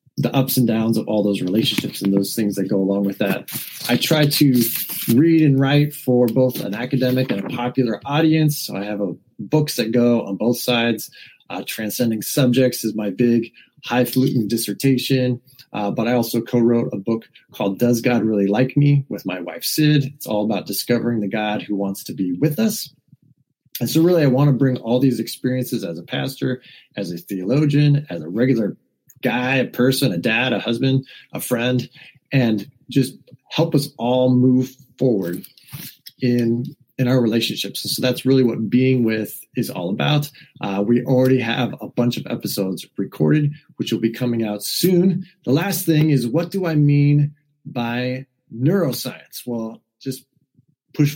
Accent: American